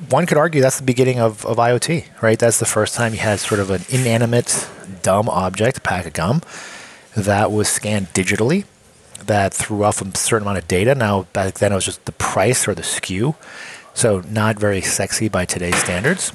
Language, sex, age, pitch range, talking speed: English, male, 30-49, 95-115 Hz, 200 wpm